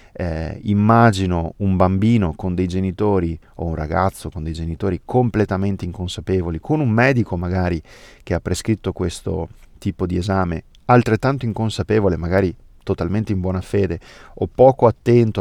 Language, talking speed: Italian, 140 wpm